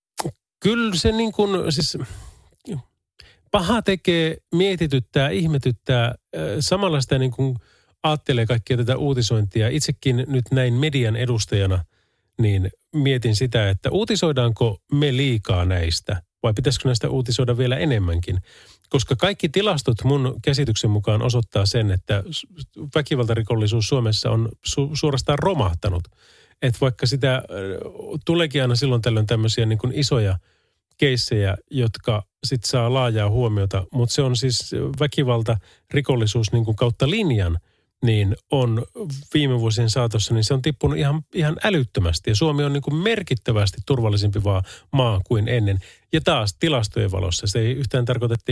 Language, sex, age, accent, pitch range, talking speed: Finnish, male, 30-49, native, 110-145 Hz, 130 wpm